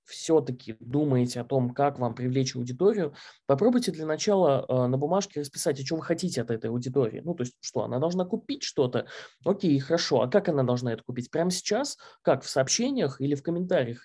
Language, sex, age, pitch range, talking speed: Russian, male, 20-39, 130-170 Hz, 195 wpm